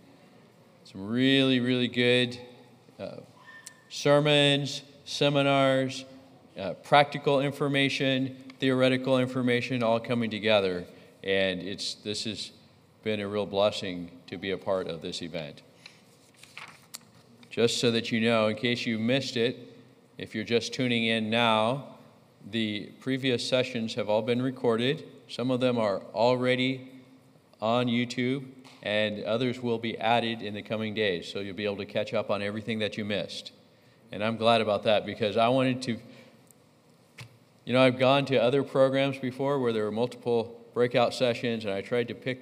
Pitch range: 110-130 Hz